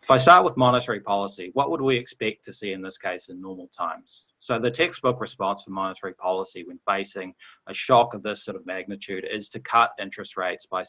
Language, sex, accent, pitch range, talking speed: English, male, Australian, 95-120 Hz, 220 wpm